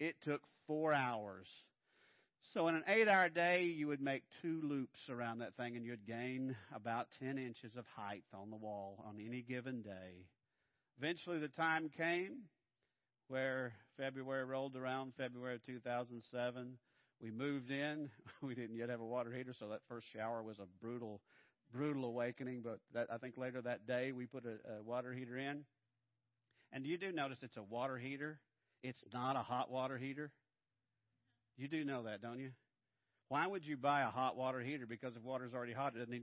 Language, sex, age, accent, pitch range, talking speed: English, male, 50-69, American, 115-135 Hz, 185 wpm